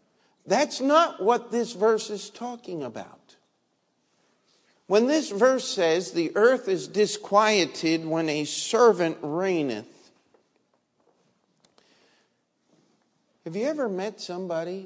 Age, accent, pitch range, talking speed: 50-69, American, 120-175 Hz, 100 wpm